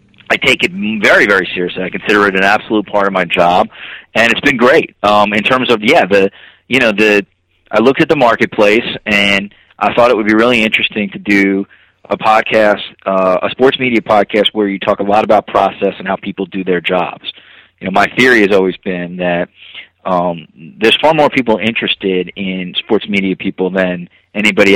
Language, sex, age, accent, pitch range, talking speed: English, male, 30-49, American, 95-115 Hz, 200 wpm